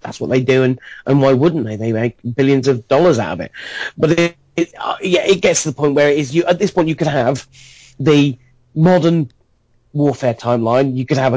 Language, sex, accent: English, male, British